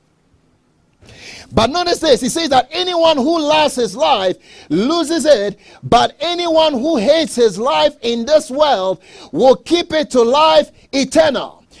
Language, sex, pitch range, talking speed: English, male, 245-315 Hz, 140 wpm